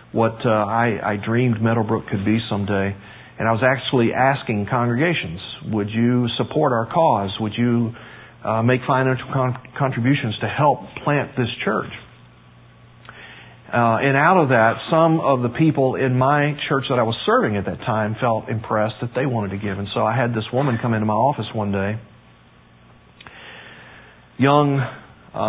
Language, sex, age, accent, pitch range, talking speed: English, male, 40-59, American, 105-125 Hz, 165 wpm